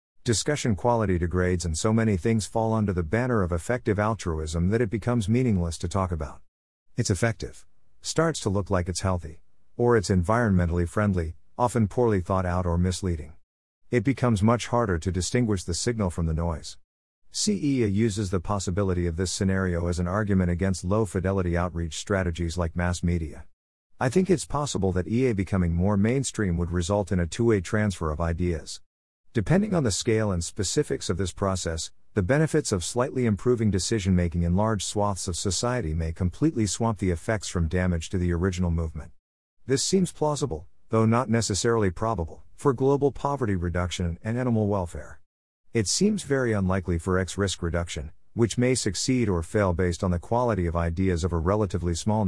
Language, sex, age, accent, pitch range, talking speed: English, male, 50-69, American, 85-115 Hz, 175 wpm